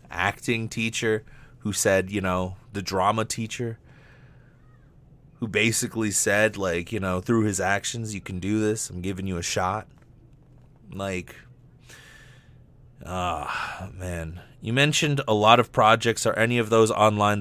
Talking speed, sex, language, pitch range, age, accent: 145 wpm, male, English, 100-135 Hz, 30-49, American